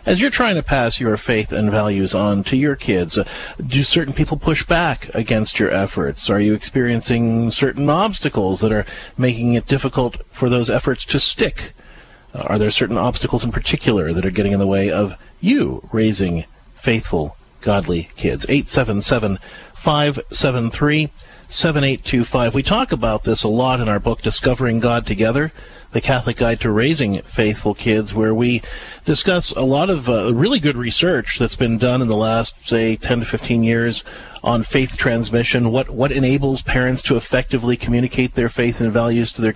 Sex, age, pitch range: male, 40-59, 110-130 Hz